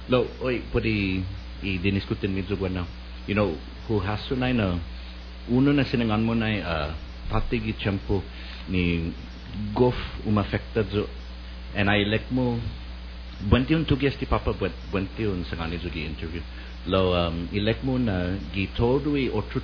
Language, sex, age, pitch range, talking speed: English, male, 50-69, 75-105 Hz, 100 wpm